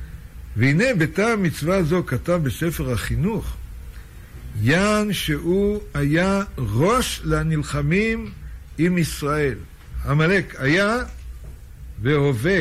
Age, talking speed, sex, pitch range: 60-79, 80 wpm, male, 115-165 Hz